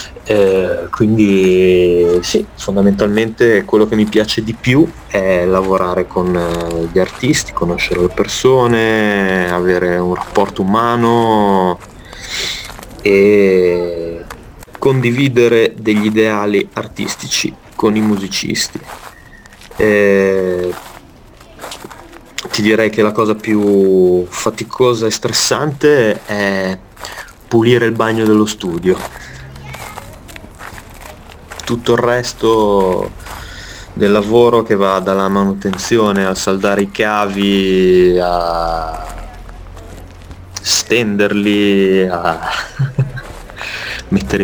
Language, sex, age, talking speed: Italian, male, 30-49, 85 wpm